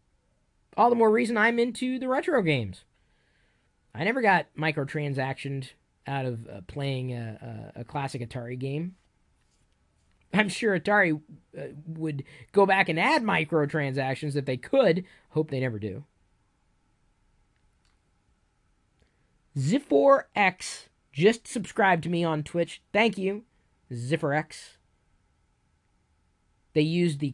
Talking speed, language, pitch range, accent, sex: 110 wpm, English, 135-175 Hz, American, male